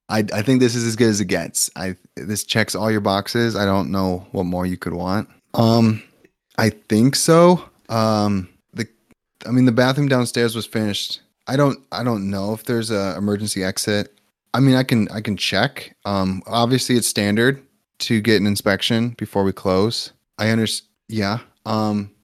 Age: 20-39